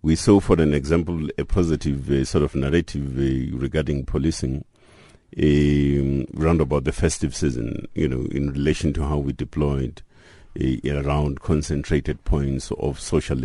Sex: male